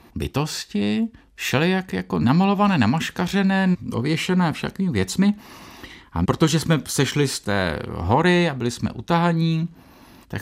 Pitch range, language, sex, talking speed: 140-205 Hz, Czech, male, 120 wpm